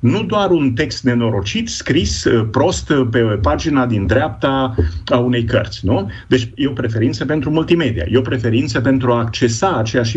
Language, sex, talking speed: Romanian, male, 165 wpm